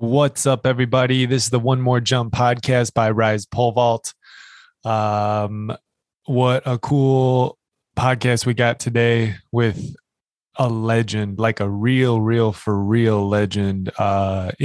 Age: 20-39